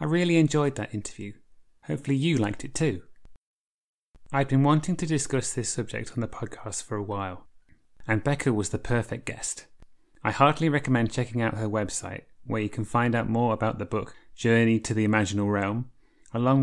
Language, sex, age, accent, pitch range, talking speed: English, male, 30-49, British, 105-135 Hz, 190 wpm